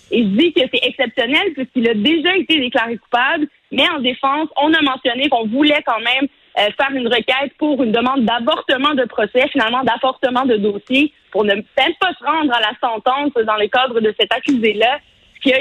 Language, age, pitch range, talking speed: French, 30-49, 215-265 Hz, 200 wpm